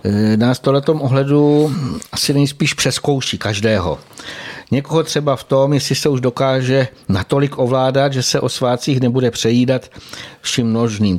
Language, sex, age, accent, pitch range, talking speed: Czech, male, 60-79, native, 115-130 Hz, 135 wpm